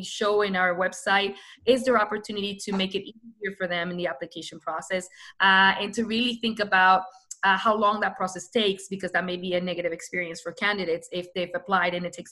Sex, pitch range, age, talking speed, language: female, 180-215 Hz, 20-39, 215 wpm, English